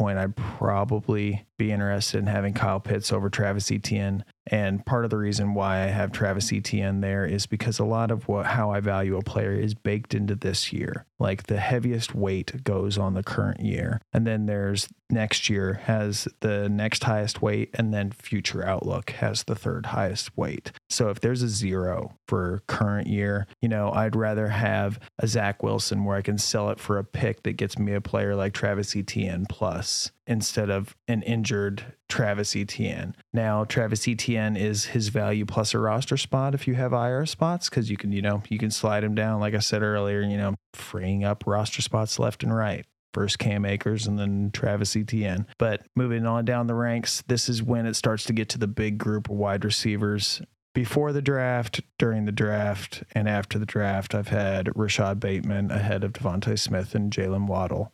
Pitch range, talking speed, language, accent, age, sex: 100-115 Hz, 200 wpm, English, American, 30-49, male